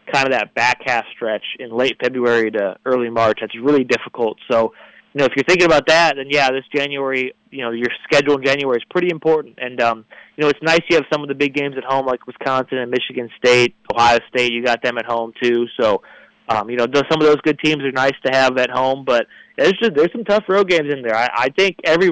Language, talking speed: English, 250 wpm